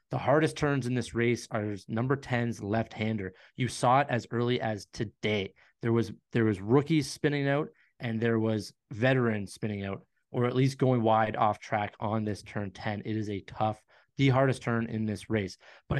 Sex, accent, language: male, American, English